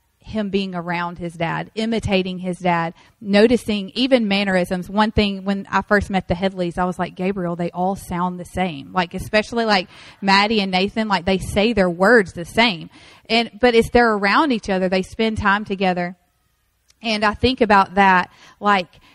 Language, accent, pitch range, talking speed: English, American, 180-215 Hz, 180 wpm